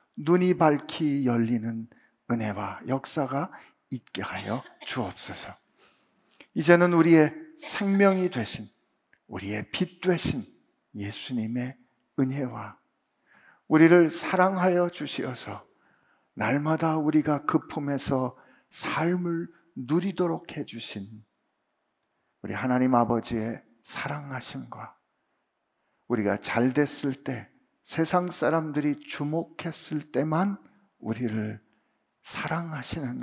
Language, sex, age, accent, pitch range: Korean, male, 50-69, native, 120-170 Hz